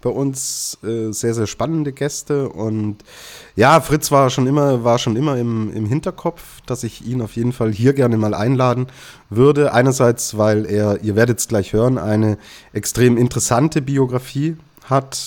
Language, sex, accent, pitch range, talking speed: German, male, German, 105-130 Hz, 165 wpm